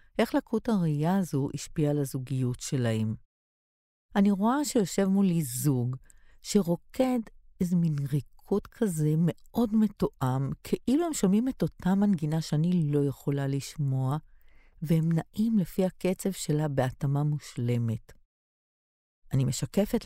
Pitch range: 135-195 Hz